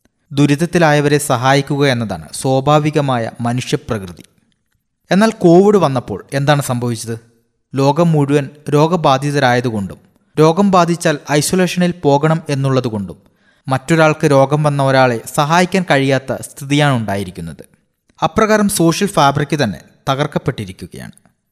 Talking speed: 85 wpm